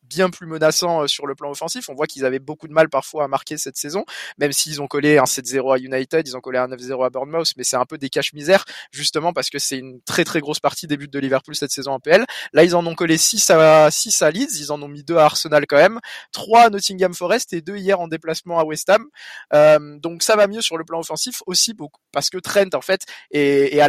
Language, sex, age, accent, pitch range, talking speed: French, male, 20-39, French, 145-175 Hz, 270 wpm